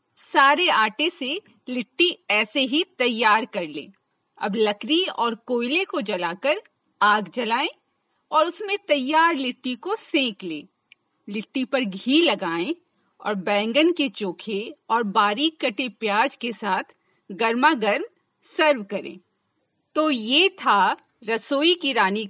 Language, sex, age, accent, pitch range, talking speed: Hindi, female, 40-59, native, 220-330 Hz, 130 wpm